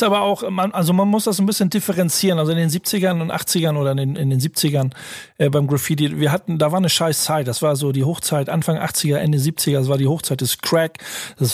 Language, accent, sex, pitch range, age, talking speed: German, German, male, 145-170 Hz, 40-59, 250 wpm